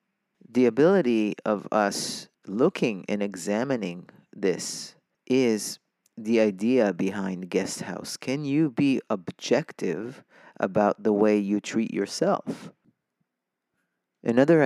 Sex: male